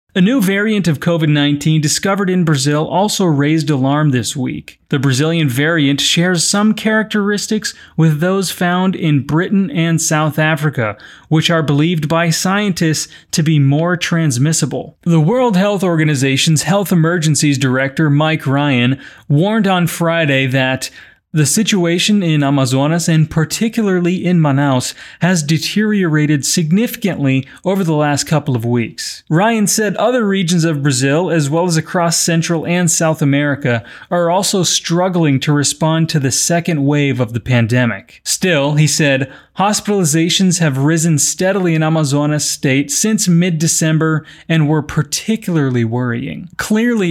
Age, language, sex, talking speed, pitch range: 30-49, Portuguese, male, 140 wpm, 145-180 Hz